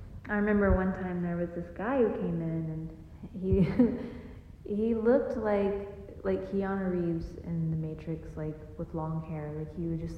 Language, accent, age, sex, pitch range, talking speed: English, American, 30-49, female, 155-195 Hz, 175 wpm